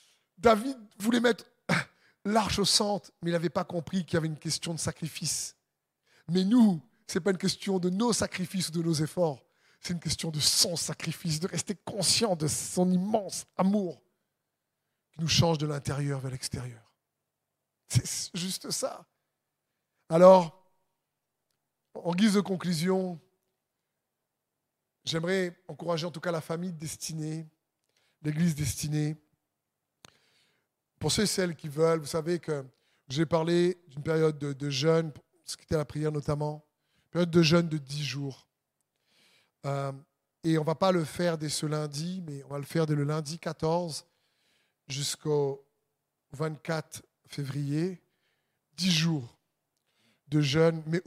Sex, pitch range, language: male, 150-180 Hz, French